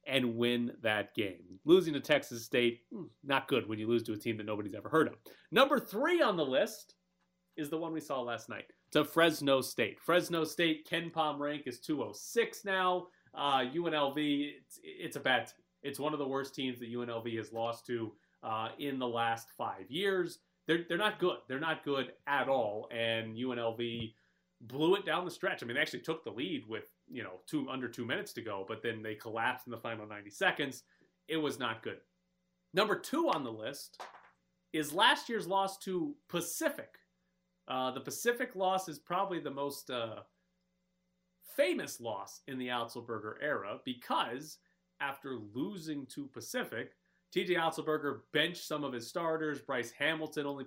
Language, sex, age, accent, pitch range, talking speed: English, male, 30-49, American, 115-170 Hz, 185 wpm